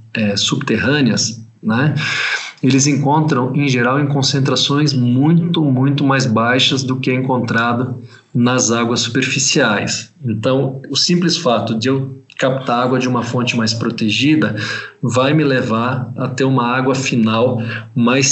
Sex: male